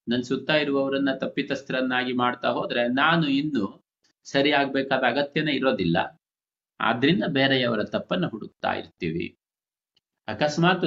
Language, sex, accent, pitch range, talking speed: Kannada, male, native, 120-145 Hz, 100 wpm